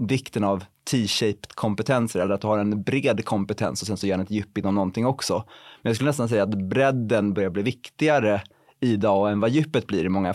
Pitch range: 105-135 Hz